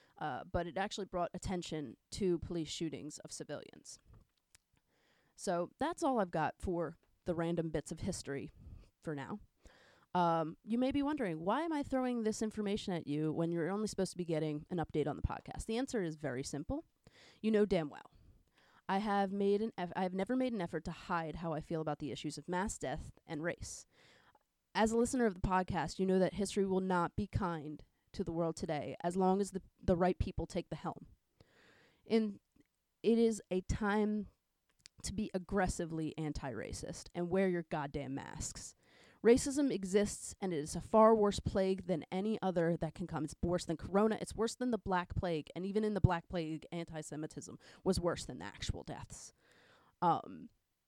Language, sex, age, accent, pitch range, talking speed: English, female, 30-49, American, 165-215 Hz, 190 wpm